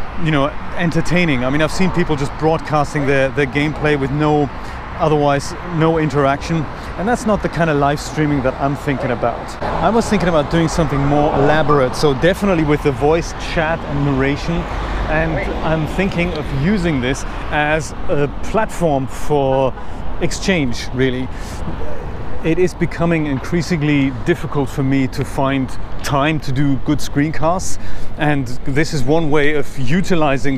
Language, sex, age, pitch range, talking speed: English, male, 30-49, 130-155 Hz, 155 wpm